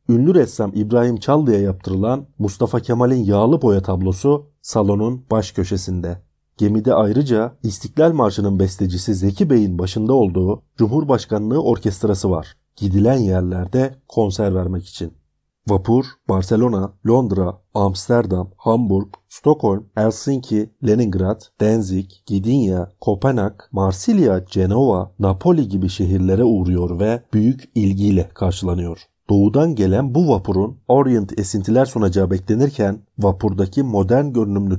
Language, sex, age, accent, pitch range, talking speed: Turkish, male, 40-59, native, 95-120 Hz, 105 wpm